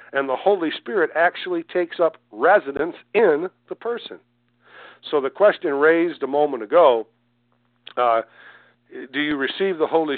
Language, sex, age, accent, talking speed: English, male, 50-69, American, 140 wpm